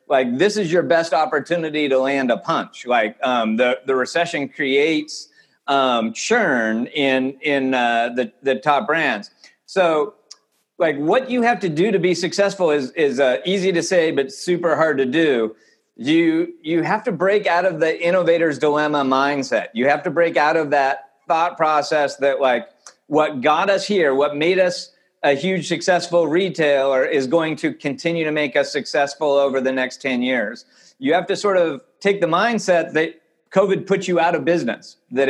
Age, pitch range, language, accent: 40-59, 140-185 Hz, English, American